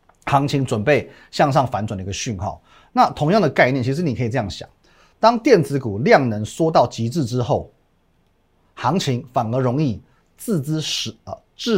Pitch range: 110-160 Hz